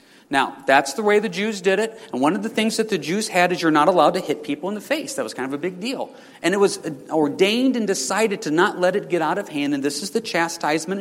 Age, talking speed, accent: 40-59, 290 wpm, American